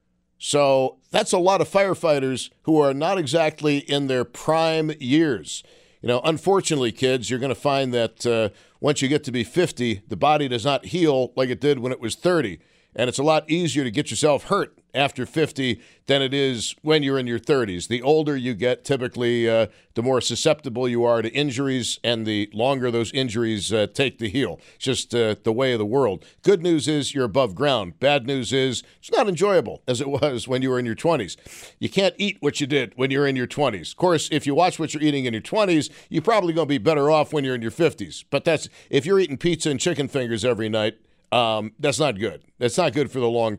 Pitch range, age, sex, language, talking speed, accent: 120-150 Hz, 50-69, male, English, 230 wpm, American